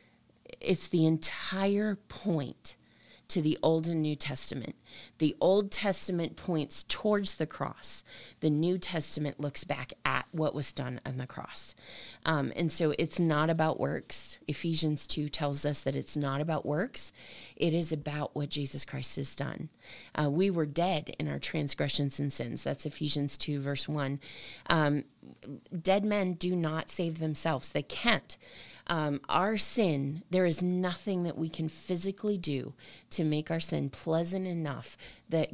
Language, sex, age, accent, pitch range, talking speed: English, female, 30-49, American, 145-175 Hz, 160 wpm